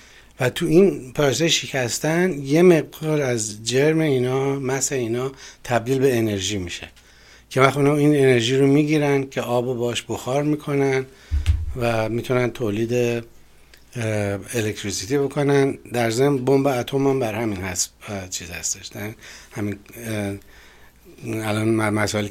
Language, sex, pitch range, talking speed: Persian, male, 105-135 Hz, 125 wpm